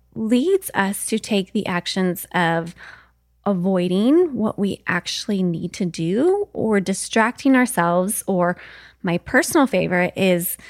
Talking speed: 125 wpm